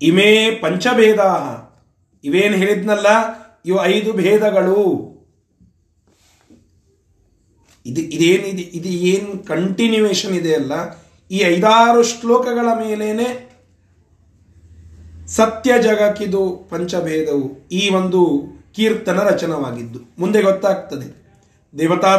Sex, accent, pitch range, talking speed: male, native, 140-205 Hz, 70 wpm